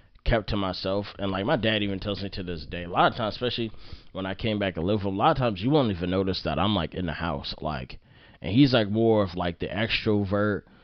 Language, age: English, 20-39